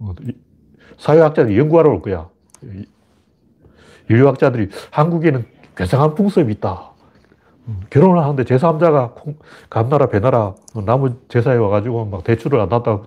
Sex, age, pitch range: male, 40-59, 100-130 Hz